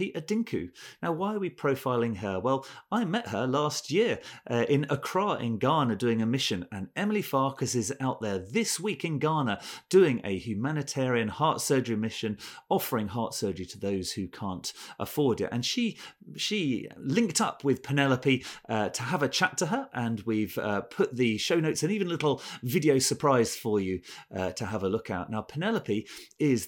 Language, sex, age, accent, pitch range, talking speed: English, male, 40-59, British, 110-145 Hz, 190 wpm